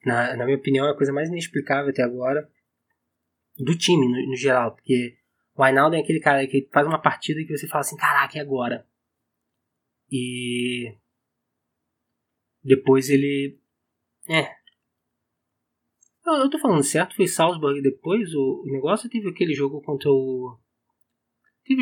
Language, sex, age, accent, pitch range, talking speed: Portuguese, male, 20-39, Brazilian, 125-155 Hz, 150 wpm